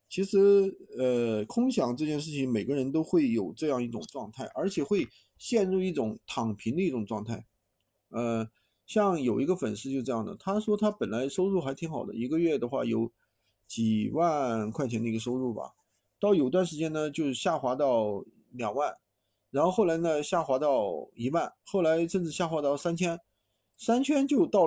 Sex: male